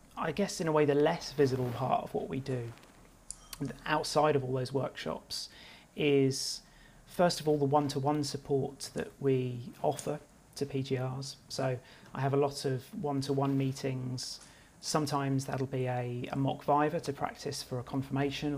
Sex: male